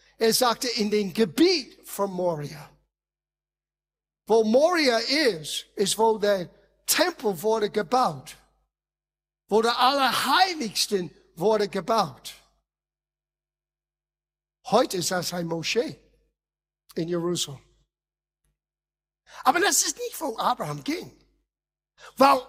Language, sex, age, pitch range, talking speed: German, male, 50-69, 175-290 Hz, 95 wpm